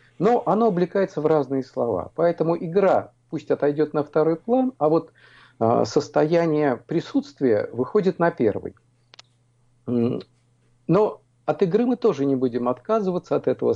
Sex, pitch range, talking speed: male, 125-170 Hz, 130 wpm